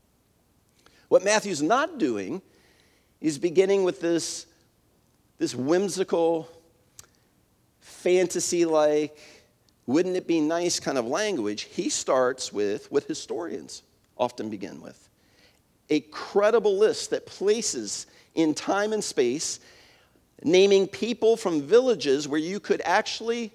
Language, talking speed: English, 100 wpm